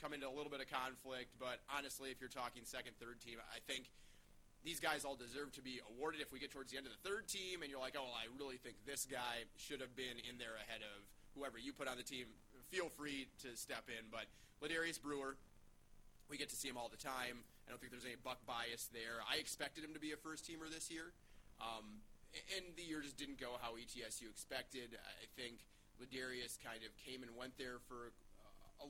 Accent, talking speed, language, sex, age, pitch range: American, 235 wpm, English, male, 30-49, 115-140 Hz